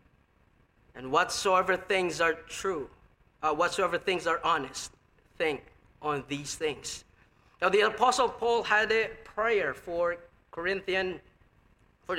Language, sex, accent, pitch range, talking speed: English, male, Filipino, 150-210 Hz, 120 wpm